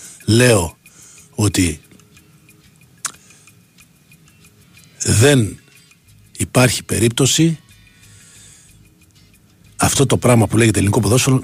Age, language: 60-79, Greek